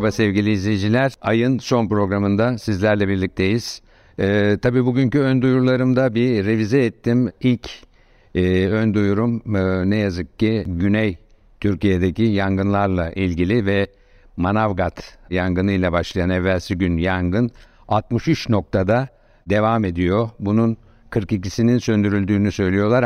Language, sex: Turkish, male